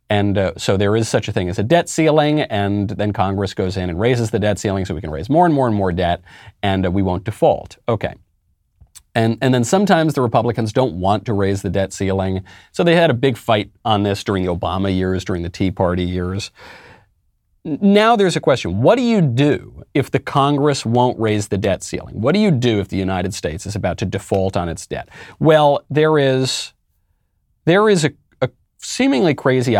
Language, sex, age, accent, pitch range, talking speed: English, male, 40-59, American, 95-140 Hz, 215 wpm